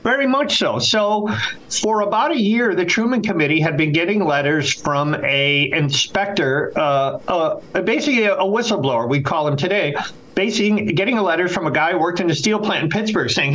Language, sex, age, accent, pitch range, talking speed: English, male, 50-69, American, 155-205 Hz, 185 wpm